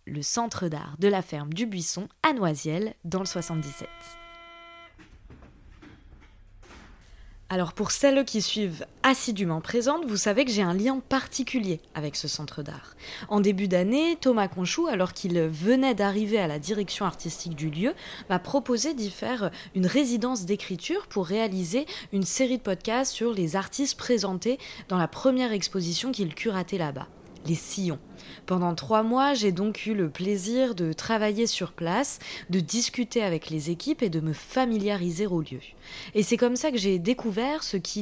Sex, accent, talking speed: female, French, 165 wpm